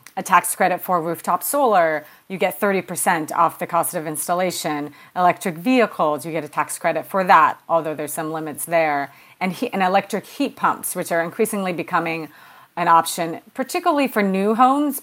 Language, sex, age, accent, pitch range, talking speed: English, female, 30-49, American, 165-195 Hz, 175 wpm